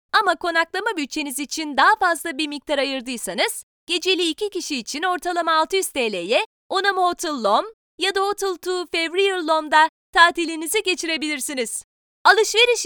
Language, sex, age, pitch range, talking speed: Turkish, female, 30-49, 300-395 Hz, 130 wpm